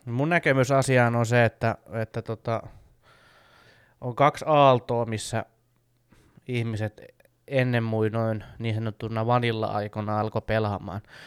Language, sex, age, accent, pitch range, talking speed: Finnish, male, 20-39, native, 110-120 Hz, 105 wpm